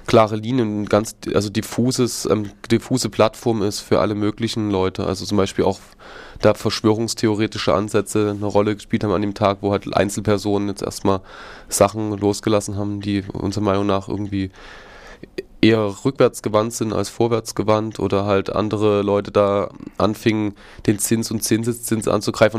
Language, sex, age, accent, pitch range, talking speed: German, male, 20-39, German, 100-115 Hz, 155 wpm